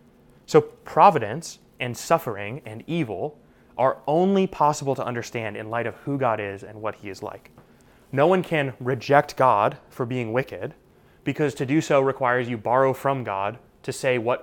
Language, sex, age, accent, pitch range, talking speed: English, male, 20-39, American, 115-145 Hz, 175 wpm